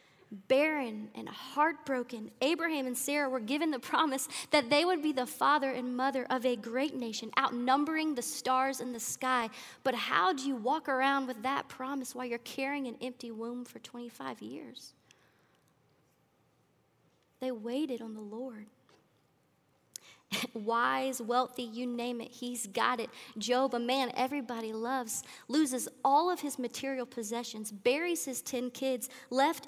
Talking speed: 150 wpm